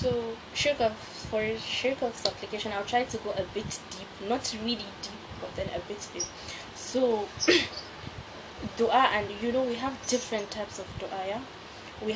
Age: 20-39